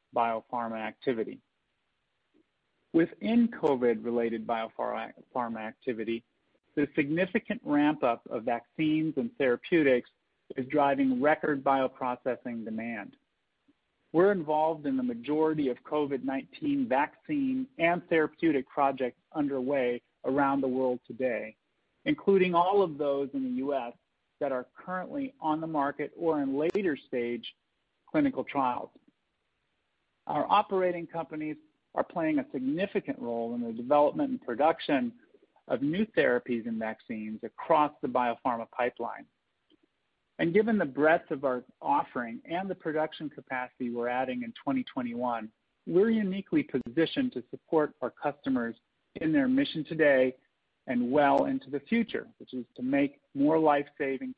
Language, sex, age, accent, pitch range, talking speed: English, male, 40-59, American, 125-200 Hz, 125 wpm